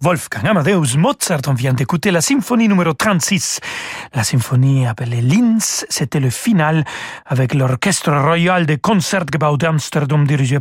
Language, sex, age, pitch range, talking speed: French, male, 40-59, 140-175 Hz, 135 wpm